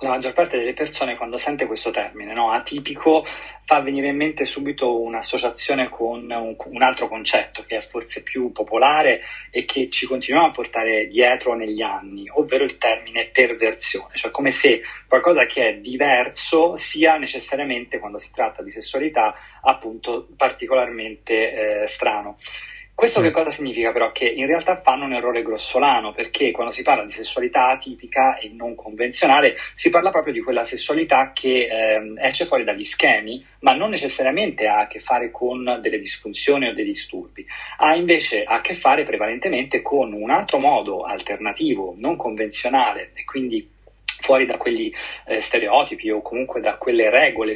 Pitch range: 115-170 Hz